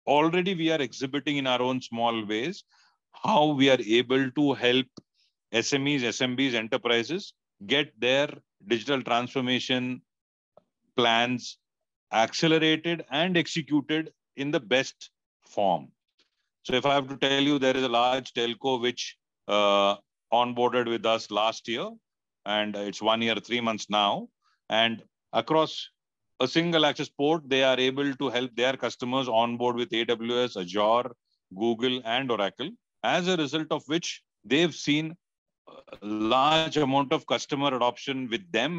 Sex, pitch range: male, 115-145 Hz